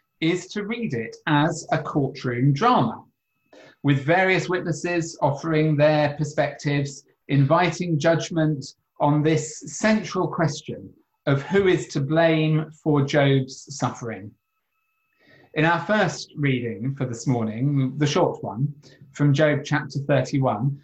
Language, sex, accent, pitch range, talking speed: English, male, British, 145-185 Hz, 120 wpm